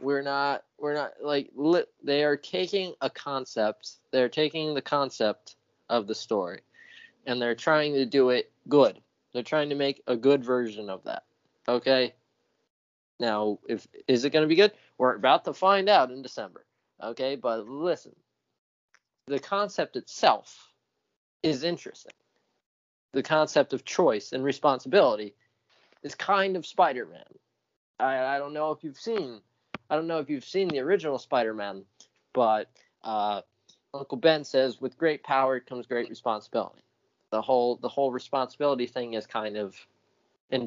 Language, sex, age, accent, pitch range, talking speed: English, male, 20-39, American, 110-150 Hz, 155 wpm